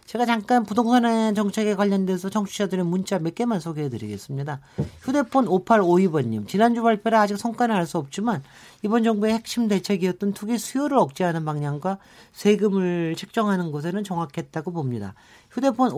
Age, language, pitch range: 40-59, Korean, 150-215 Hz